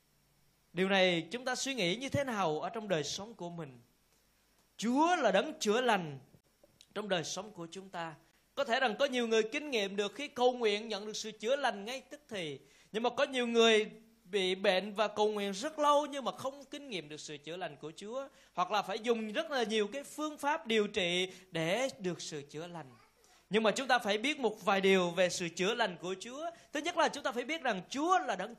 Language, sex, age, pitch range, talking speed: Vietnamese, male, 20-39, 185-270 Hz, 235 wpm